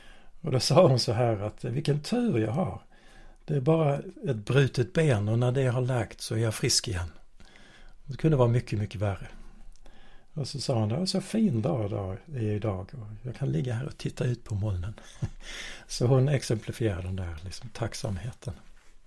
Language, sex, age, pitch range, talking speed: Swedish, male, 60-79, 105-130 Hz, 195 wpm